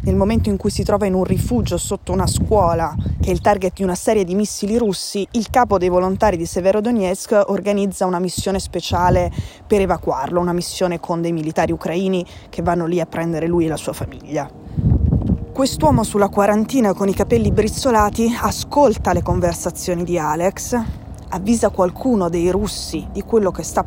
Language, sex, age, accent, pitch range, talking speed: Italian, female, 20-39, native, 180-210 Hz, 175 wpm